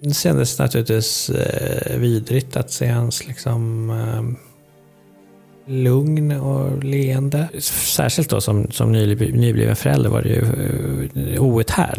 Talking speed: 95 wpm